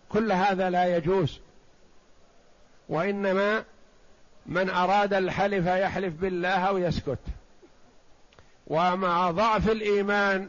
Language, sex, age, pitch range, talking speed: Arabic, male, 50-69, 180-210 Hz, 85 wpm